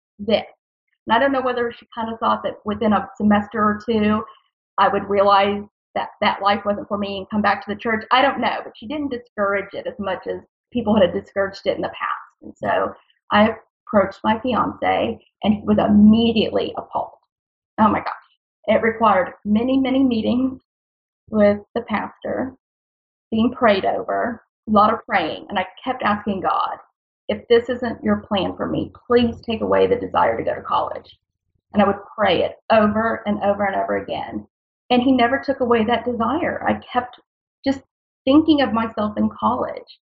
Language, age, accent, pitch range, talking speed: English, 30-49, American, 205-245 Hz, 185 wpm